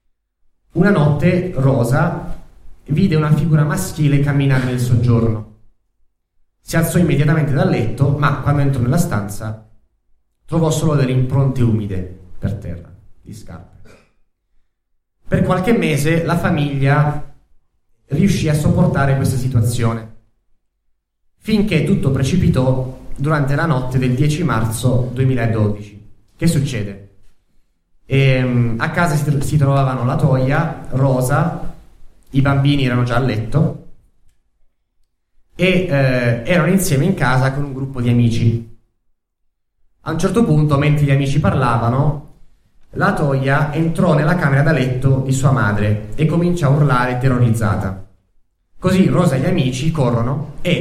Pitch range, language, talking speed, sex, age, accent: 110-150 Hz, Italian, 125 wpm, male, 30-49, native